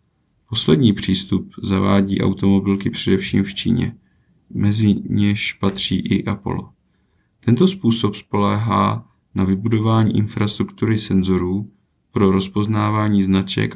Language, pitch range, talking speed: Czech, 100-110 Hz, 95 wpm